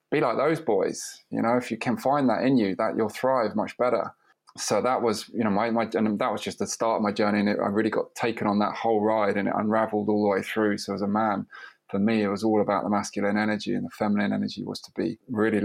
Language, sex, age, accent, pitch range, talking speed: English, male, 20-39, British, 105-115 Hz, 275 wpm